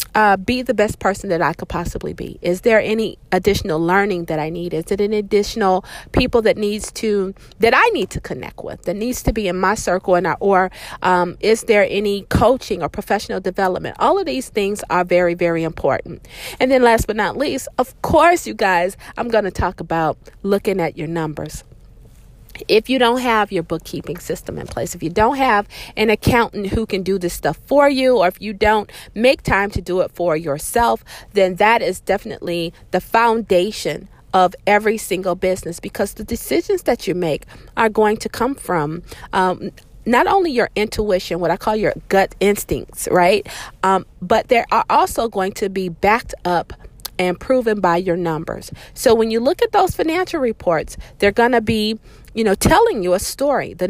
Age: 40-59